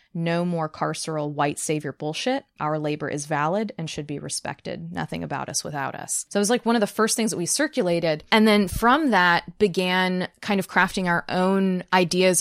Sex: female